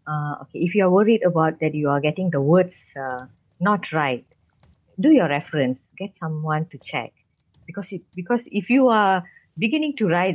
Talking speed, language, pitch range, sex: 185 wpm, English, 145-190 Hz, female